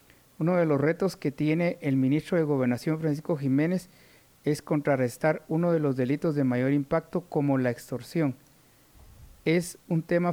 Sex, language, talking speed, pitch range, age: male, Spanish, 155 wpm, 135-160 Hz, 50-69